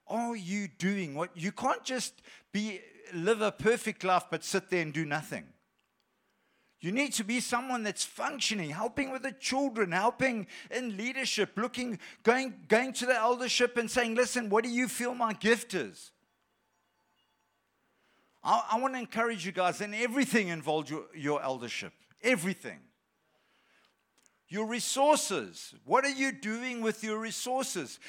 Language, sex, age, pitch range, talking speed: English, male, 50-69, 185-240 Hz, 150 wpm